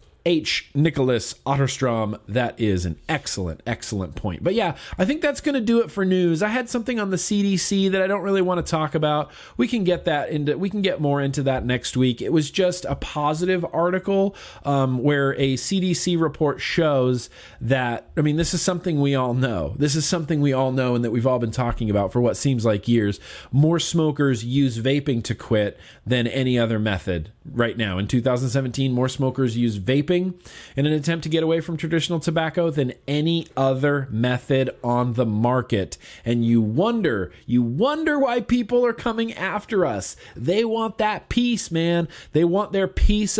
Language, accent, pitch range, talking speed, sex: English, American, 125-180 Hz, 195 wpm, male